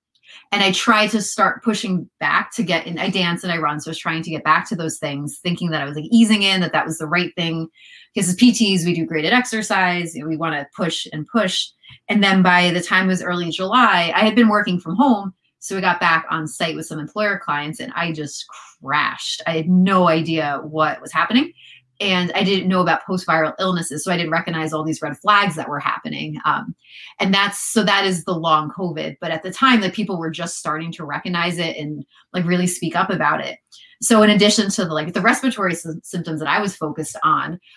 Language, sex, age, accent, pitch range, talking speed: English, female, 30-49, American, 165-200 Hz, 230 wpm